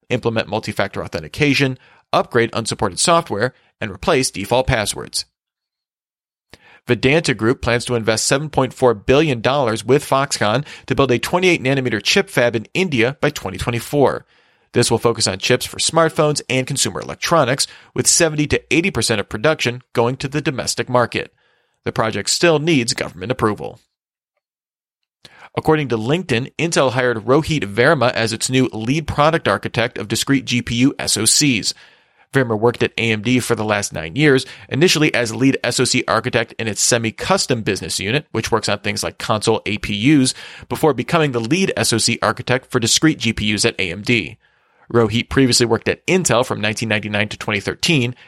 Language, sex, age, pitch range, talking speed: English, male, 40-59, 110-135 Hz, 145 wpm